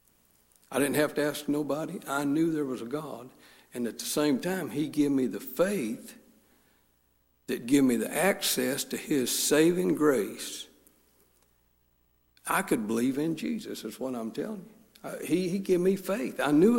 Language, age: English, 60-79